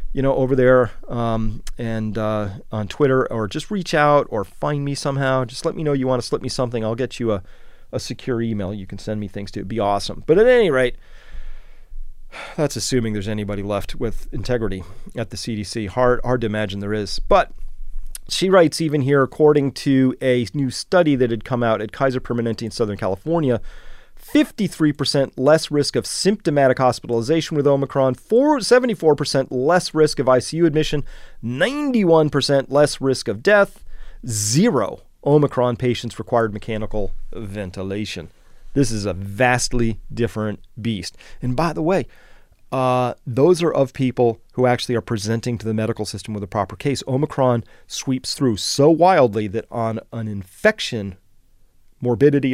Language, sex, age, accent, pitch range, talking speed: English, male, 30-49, American, 110-145 Hz, 165 wpm